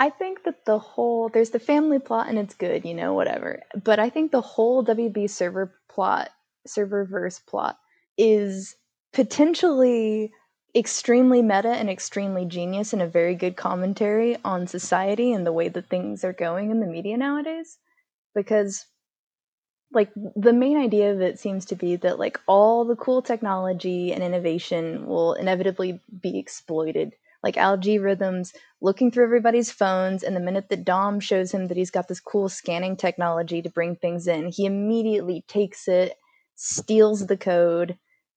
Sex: female